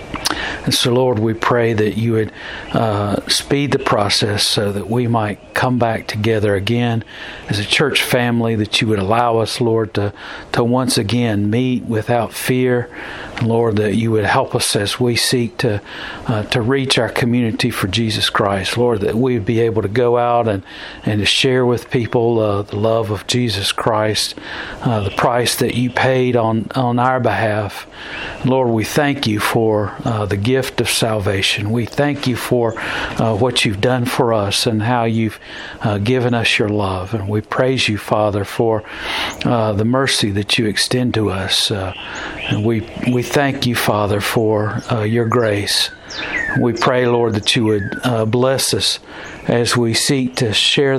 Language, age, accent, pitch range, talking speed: English, 50-69, American, 105-125 Hz, 180 wpm